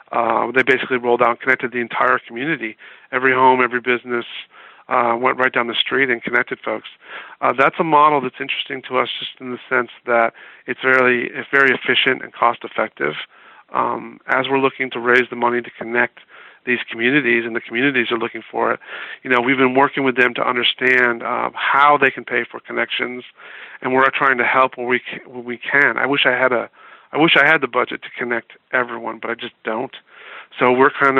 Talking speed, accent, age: 210 wpm, American, 40-59